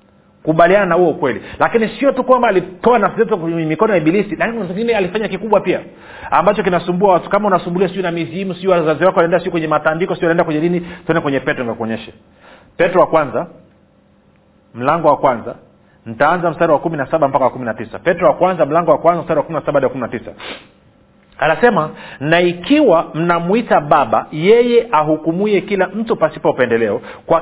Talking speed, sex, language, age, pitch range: 175 wpm, male, Swahili, 40-59, 155-215 Hz